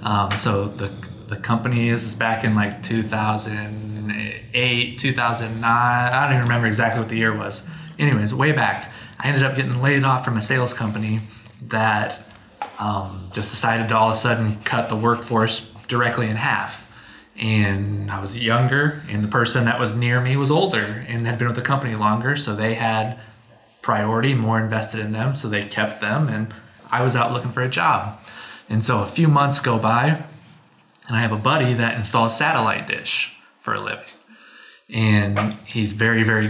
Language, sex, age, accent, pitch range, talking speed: English, male, 20-39, American, 110-130 Hz, 180 wpm